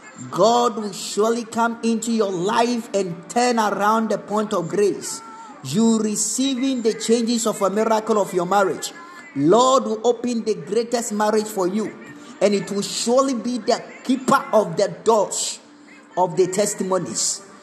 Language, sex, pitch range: Japanese, male, 190-235 Hz